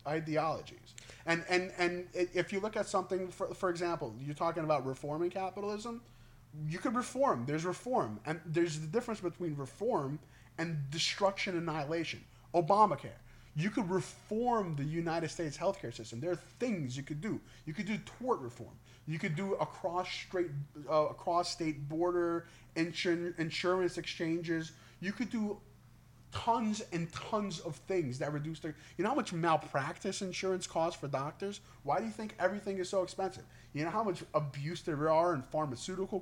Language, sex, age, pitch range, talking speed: English, male, 30-49, 145-185 Hz, 165 wpm